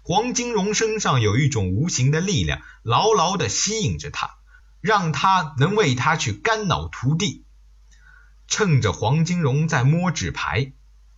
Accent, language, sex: native, Chinese, male